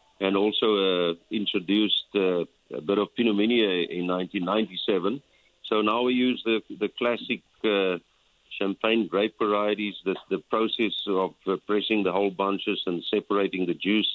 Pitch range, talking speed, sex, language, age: 95-110 Hz, 155 wpm, male, English, 50-69